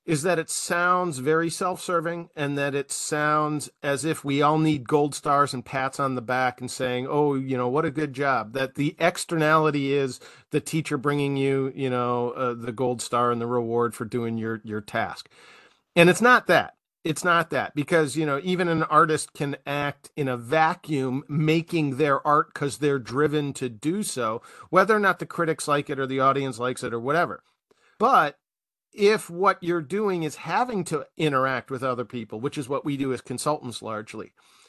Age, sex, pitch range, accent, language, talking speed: 40-59, male, 135-160 Hz, American, English, 195 wpm